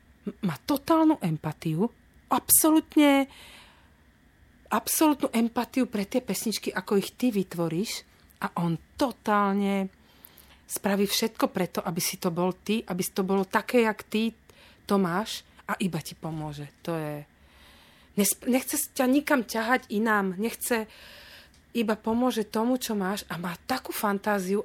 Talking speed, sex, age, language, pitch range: 130 wpm, female, 40-59, Slovak, 185-230 Hz